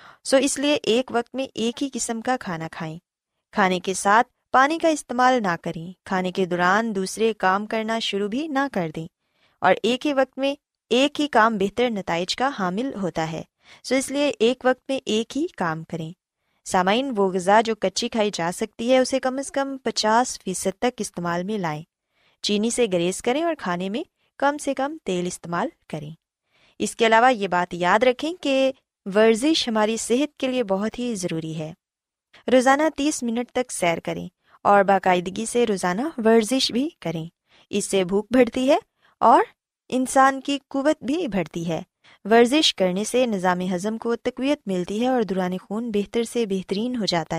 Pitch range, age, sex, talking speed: 185-260 Hz, 20-39, female, 190 wpm